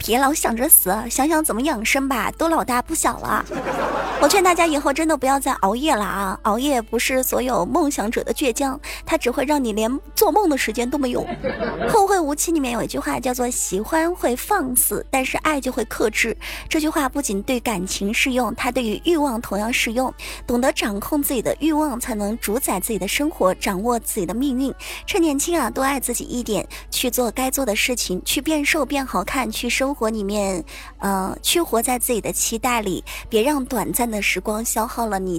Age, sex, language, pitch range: 20-39, male, Chinese, 225-295 Hz